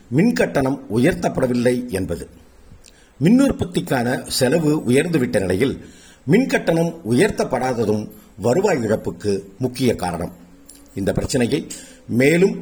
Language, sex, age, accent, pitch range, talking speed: Tamil, male, 50-69, native, 105-150 Hz, 80 wpm